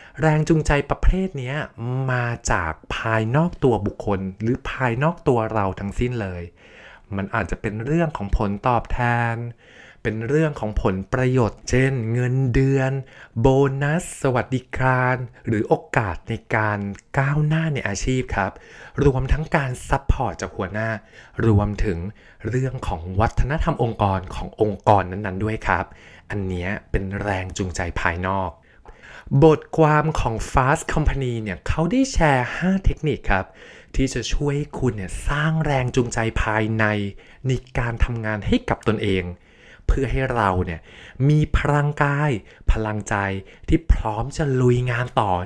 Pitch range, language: 100-135 Hz, Thai